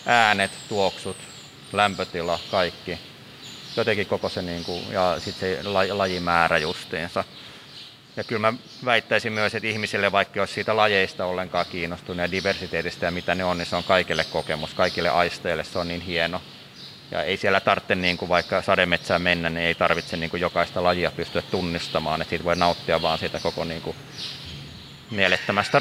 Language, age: Finnish, 30-49